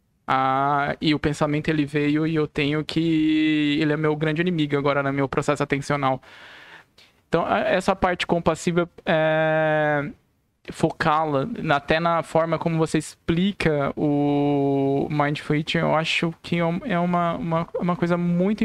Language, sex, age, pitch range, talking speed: Portuguese, male, 20-39, 145-170 Hz, 140 wpm